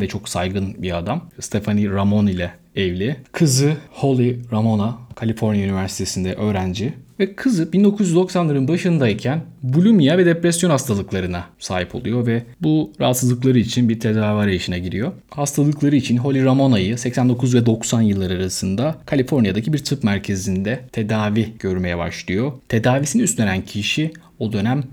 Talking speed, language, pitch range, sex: 130 wpm, Turkish, 100-130 Hz, male